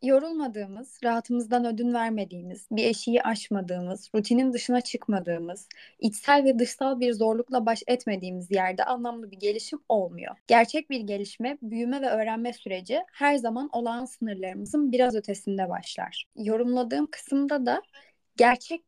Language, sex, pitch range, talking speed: Turkish, female, 205-255 Hz, 125 wpm